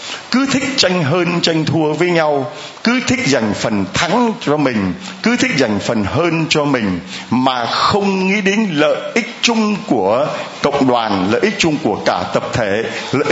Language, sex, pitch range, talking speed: Vietnamese, male, 155-230 Hz, 180 wpm